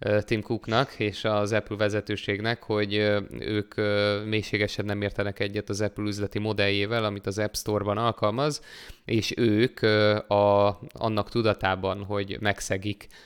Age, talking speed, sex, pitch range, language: 20-39, 125 wpm, male, 100-110 Hz, Hungarian